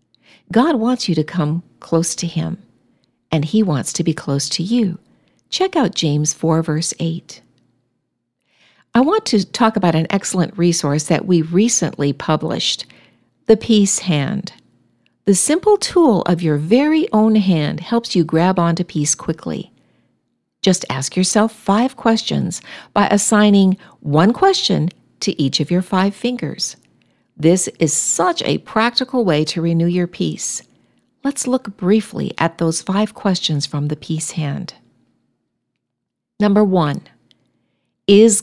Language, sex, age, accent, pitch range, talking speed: English, female, 50-69, American, 155-220 Hz, 140 wpm